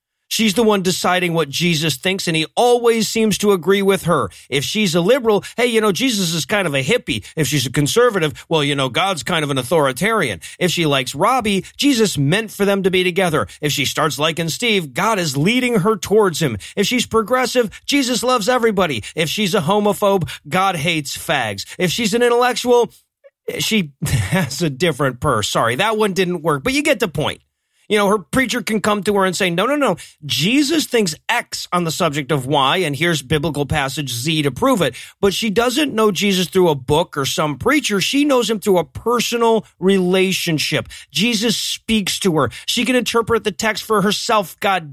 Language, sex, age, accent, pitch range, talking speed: English, male, 40-59, American, 155-220 Hz, 205 wpm